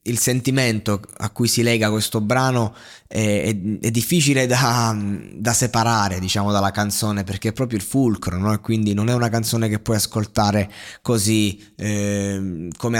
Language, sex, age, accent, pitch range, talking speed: Italian, male, 20-39, native, 110-130 Hz, 160 wpm